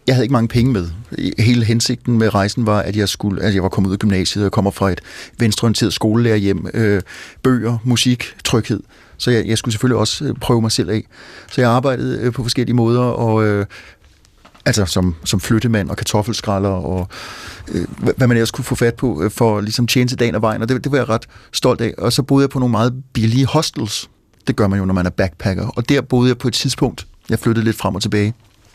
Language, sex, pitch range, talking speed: Danish, male, 105-125 Hz, 230 wpm